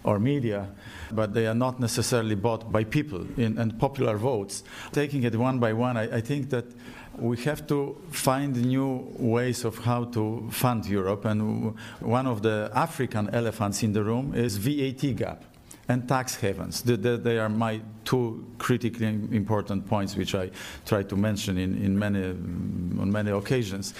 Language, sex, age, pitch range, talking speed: English, male, 50-69, 105-125 Hz, 170 wpm